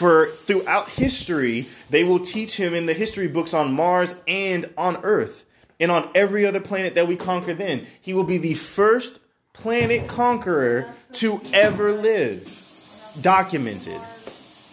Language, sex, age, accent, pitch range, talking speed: English, male, 20-39, American, 145-200 Hz, 145 wpm